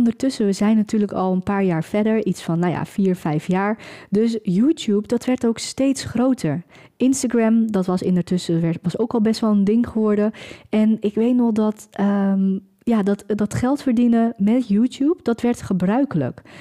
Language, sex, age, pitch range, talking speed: Dutch, female, 20-39, 205-250 Hz, 190 wpm